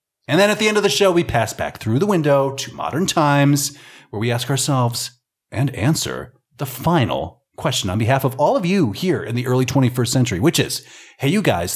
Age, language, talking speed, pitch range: 30-49, English, 220 wpm, 115-160 Hz